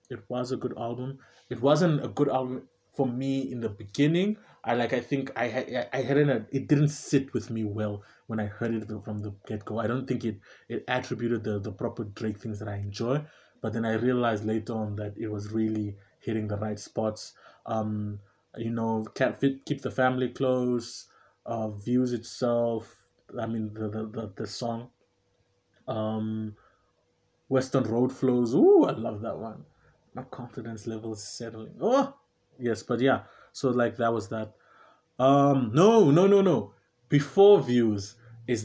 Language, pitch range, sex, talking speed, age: English, 110-135 Hz, male, 175 wpm, 20-39